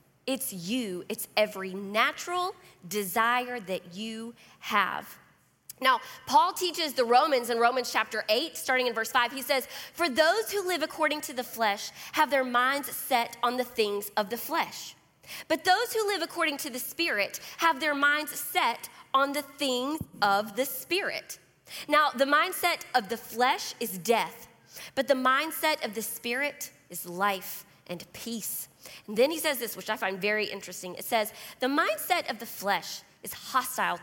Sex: female